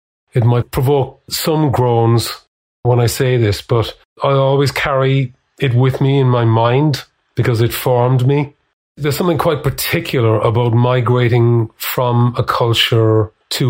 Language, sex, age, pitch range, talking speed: English, male, 30-49, 115-135 Hz, 145 wpm